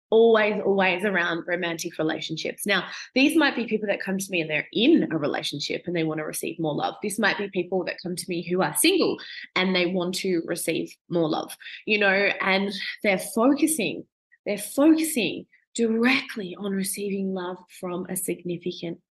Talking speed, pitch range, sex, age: 180 wpm, 175-230 Hz, female, 20-39